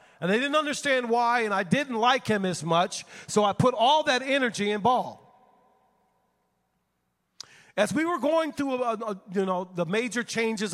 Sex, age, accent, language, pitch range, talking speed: male, 40-59, American, English, 175-220 Hz, 170 wpm